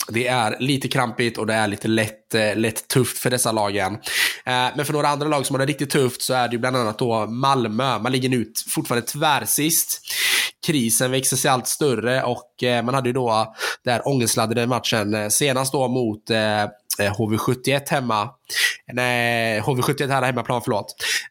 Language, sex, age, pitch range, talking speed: Swedish, male, 20-39, 110-130 Hz, 165 wpm